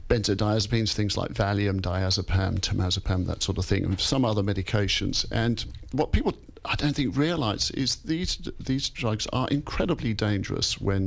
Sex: male